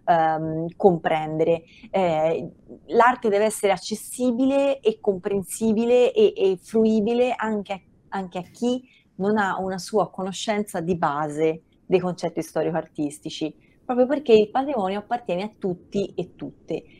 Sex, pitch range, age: female, 170-215 Hz, 30-49